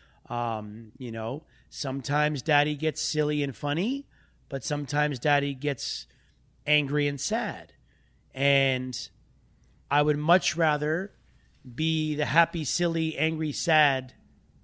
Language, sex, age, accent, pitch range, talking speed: English, male, 30-49, American, 130-160 Hz, 110 wpm